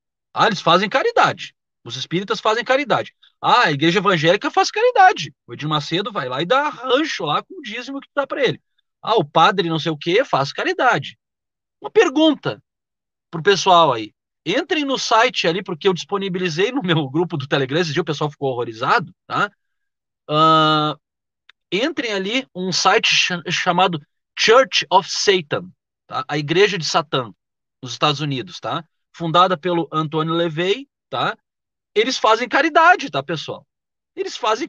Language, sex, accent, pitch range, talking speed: Portuguese, male, Brazilian, 155-255 Hz, 160 wpm